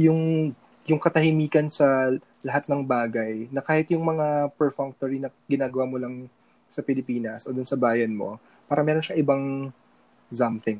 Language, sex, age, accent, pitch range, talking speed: Filipino, male, 20-39, native, 120-145 Hz, 155 wpm